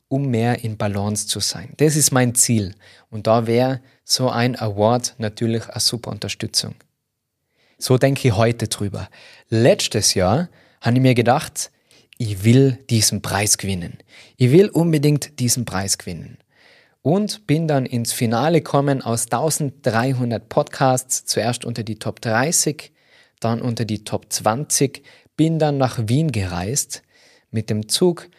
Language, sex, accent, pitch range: German, male, German, 110-135 Hz